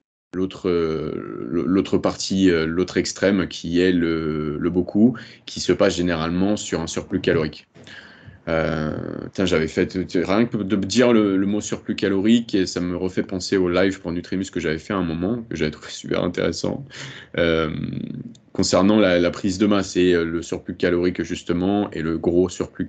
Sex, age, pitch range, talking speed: male, 30-49, 80-100 Hz, 175 wpm